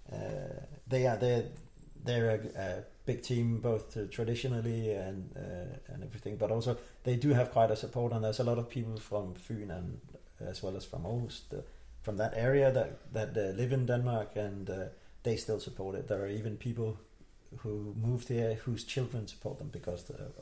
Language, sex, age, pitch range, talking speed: English, male, 40-59, 100-125 Hz, 200 wpm